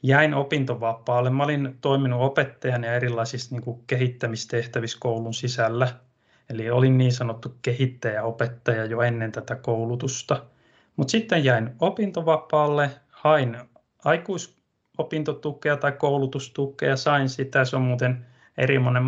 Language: Finnish